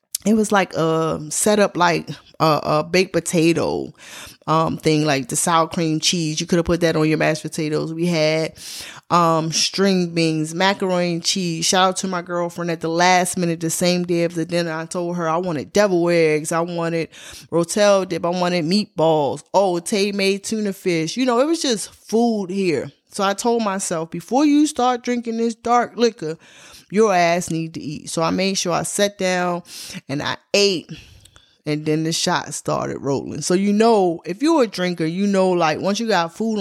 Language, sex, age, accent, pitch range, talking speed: English, female, 20-39, American, 160-200 Hz, 200 wpm